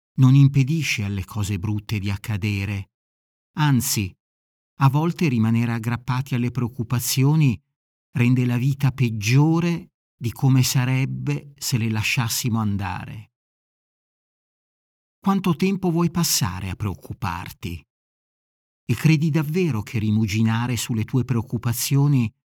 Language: Italian